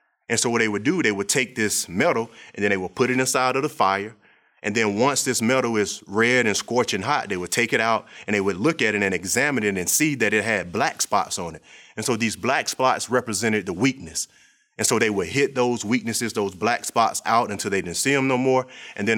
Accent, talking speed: American, 255 wpm